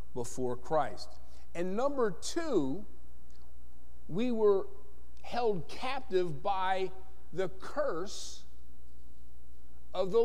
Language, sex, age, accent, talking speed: English, male, 50-69, American, 80 wpm